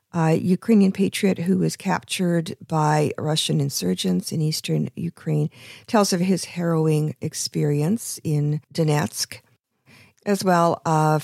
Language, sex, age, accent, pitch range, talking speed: English, female, 50-69, American, 145-195 Hz, 125 wpm